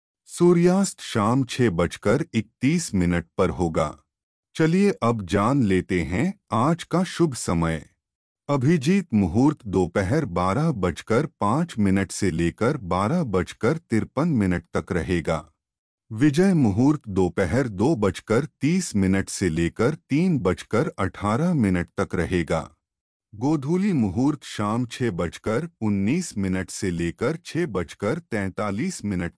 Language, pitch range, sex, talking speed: Hindi, 90-150 Hz, male, 125 wpm